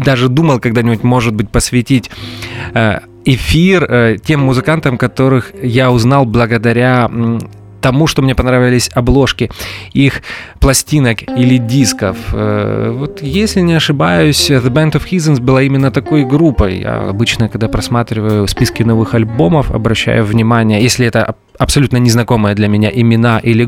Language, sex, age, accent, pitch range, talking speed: Russian, male, 20-39, native, 115-145 Hz, 130 wpm